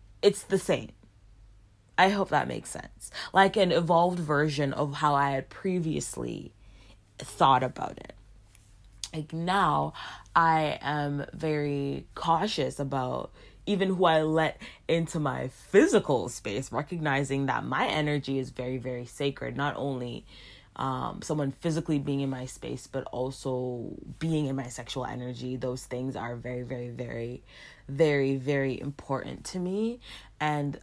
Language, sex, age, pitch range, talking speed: English, female, 20-39, 125-155 Hz, 140 wpm